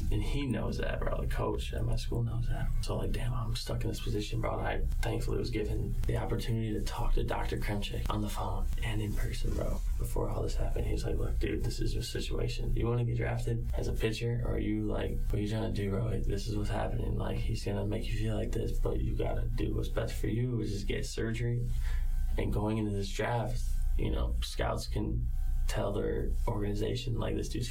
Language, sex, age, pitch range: English, male, 20-39, 100-115 Hz